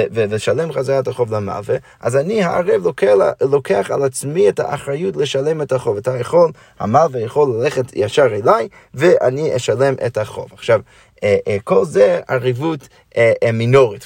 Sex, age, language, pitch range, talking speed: male, 30-49, Hebrew, 125-195 Hz, 130 wpm